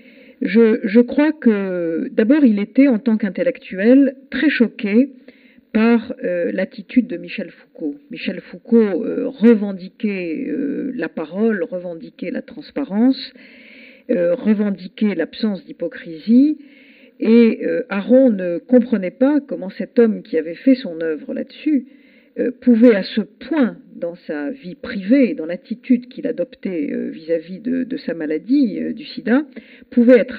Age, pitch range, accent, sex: 50-69, 215-260 Hz, French, female